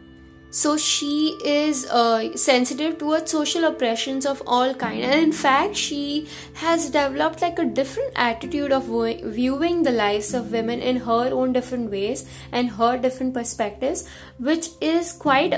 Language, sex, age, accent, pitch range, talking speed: English, female, 20-39, Indian, 220-275 Hz, 155 wpm